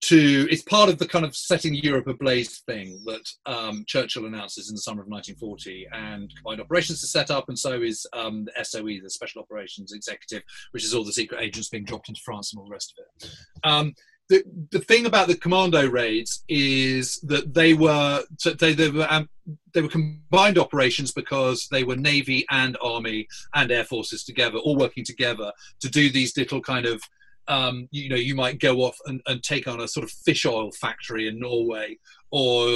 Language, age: English, 30-49